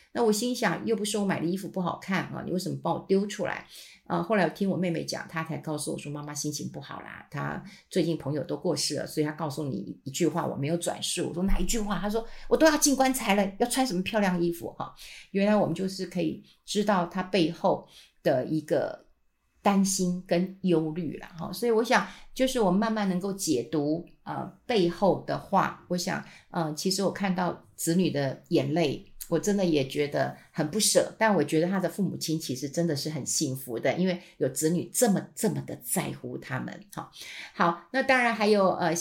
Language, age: Chinese, 50-69